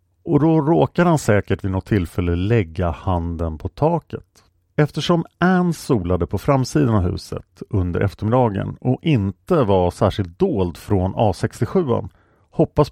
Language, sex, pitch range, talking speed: English, male, 95-130 Hz, 135 wpm